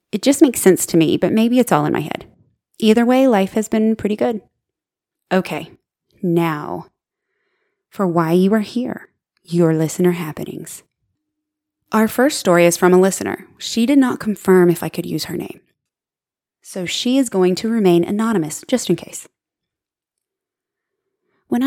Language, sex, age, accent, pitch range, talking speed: English, female, 20-39, American, 180-260 Hz, 160 wpm